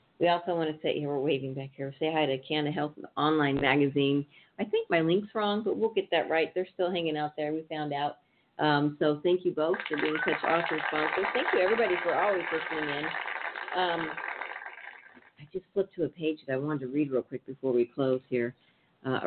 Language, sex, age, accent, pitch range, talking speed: English, female, 50-69, American, 140-175 Hz, 220 wpm